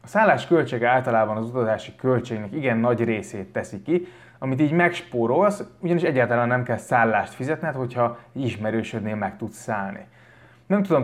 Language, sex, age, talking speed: Hungarian, male, 20-39, 150 wpm